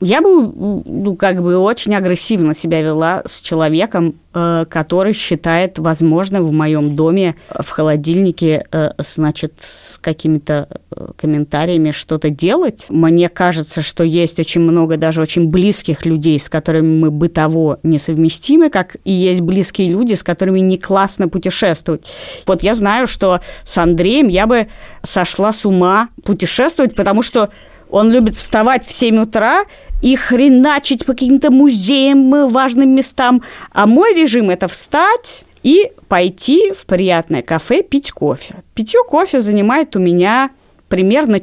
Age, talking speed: 20-39, 140 wpm